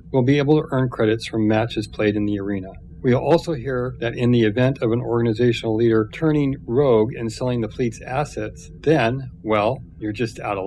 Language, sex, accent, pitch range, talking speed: English, male, American, 110-135 Hz, 210 wpm